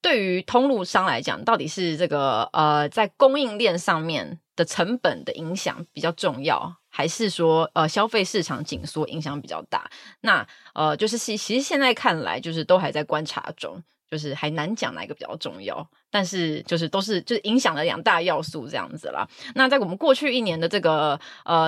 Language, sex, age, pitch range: Chinese, female, 20-39, 155-210 Hz